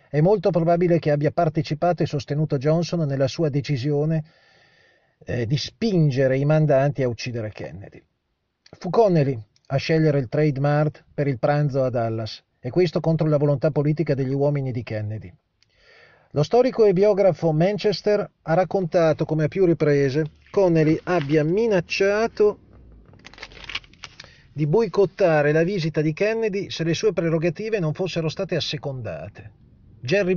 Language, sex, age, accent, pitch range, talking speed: Italian, male, 40-59, native, 140-185 Hz, 140 wpm